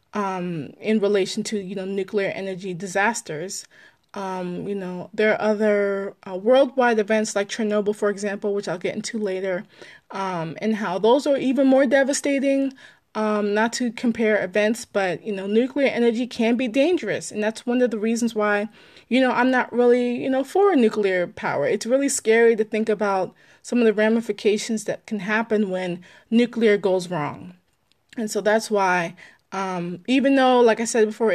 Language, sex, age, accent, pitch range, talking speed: English, female, 20-39, American, 195-235 Hz, 180 wpm